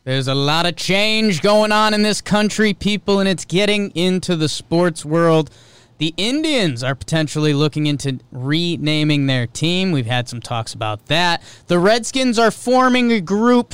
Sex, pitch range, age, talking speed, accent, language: male, 130-185 Hz, 20-39, 170 wpm, American, English